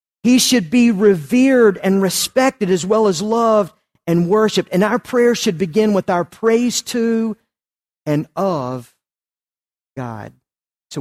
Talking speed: 135 wpm